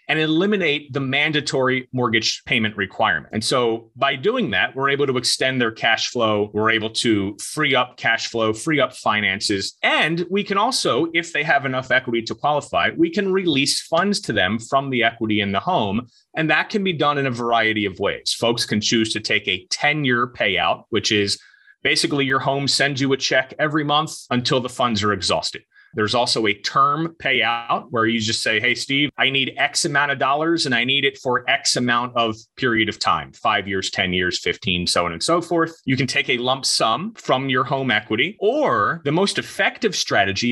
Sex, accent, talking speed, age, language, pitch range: male, American, 205 wpm, 30-49, English, 110-145 Hz